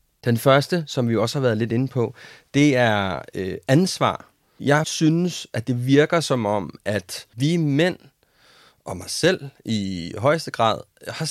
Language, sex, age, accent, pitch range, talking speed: Danish, male, 30-49, native, 115-150 Hz, 165 wpm